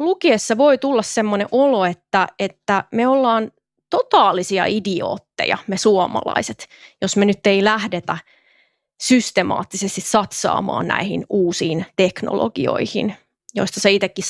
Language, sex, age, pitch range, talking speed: Finnish, female, 30-49, 190-230 Hz, 110 wpm